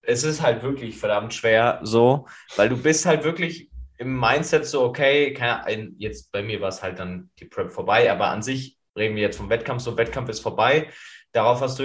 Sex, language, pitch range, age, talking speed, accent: male, German, 110-135 Hz, 20-39, 215 wpm, German